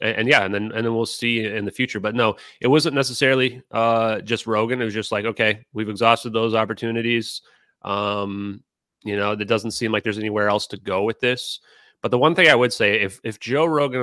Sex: male